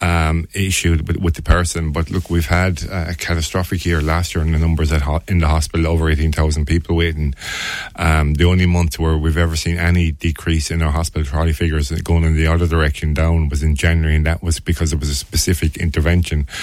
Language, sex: English, male